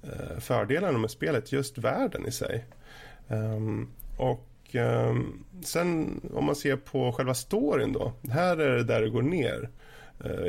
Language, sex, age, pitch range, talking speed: Swedish, male, 30-49, 115-140 Hz, 150 wpm